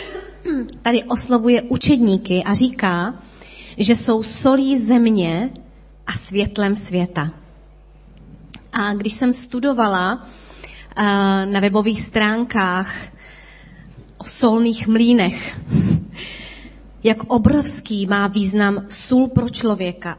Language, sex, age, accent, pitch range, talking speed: Czech, female, 30-49, native, 190-235 Hz, 90 wpm